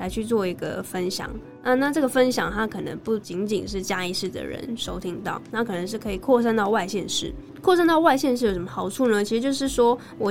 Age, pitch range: 10-29, 195-245 Hz